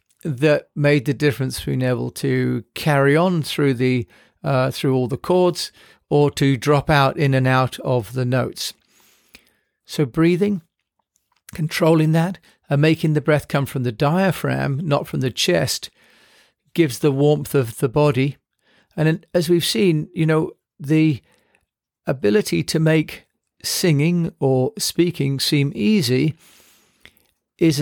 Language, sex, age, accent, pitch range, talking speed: English, male, 50-69, British, 135-165 Hz, 140 wpm